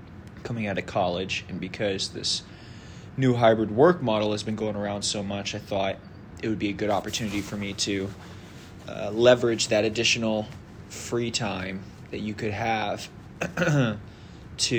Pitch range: 100-110 Hz